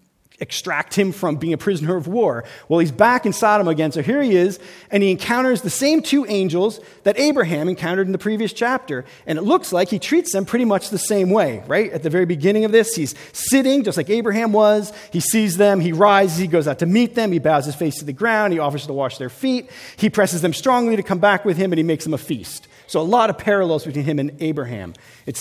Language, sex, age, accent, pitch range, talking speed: English, male, 40-59, American, 160-215 Hz, 250 wpm